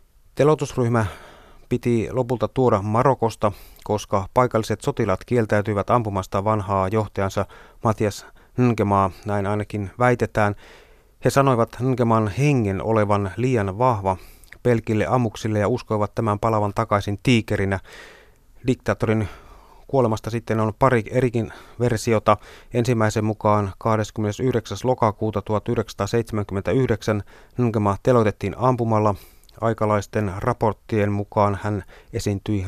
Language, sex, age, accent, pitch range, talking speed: Finnish, male, 30-49, native, 105-120 Hz, 95 wpm